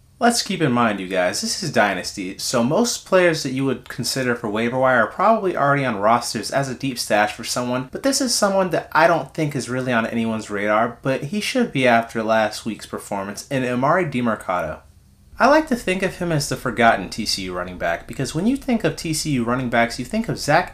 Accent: American